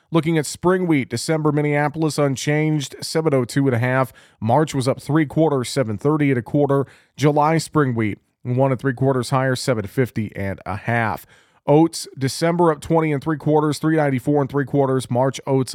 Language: English